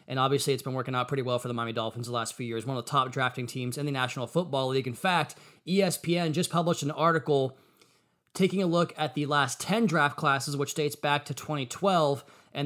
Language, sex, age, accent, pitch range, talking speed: English, male, 20-39, American, 135-160 Hz, 230 wpm